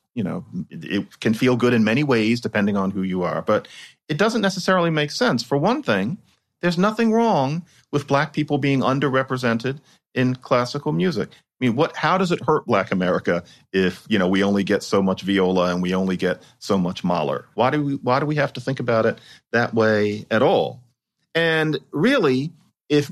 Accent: American